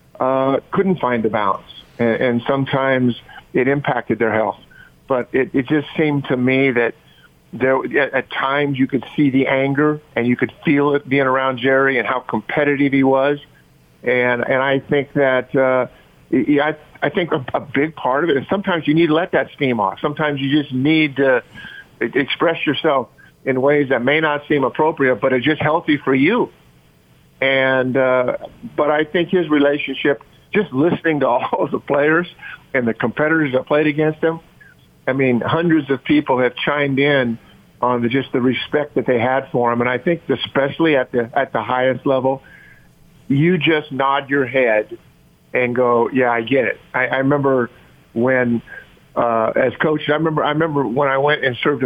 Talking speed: 185 wpm